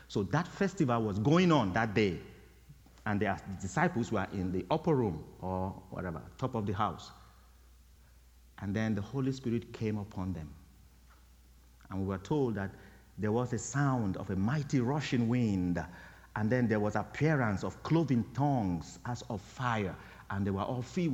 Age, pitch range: 50-69, 90-150 Hz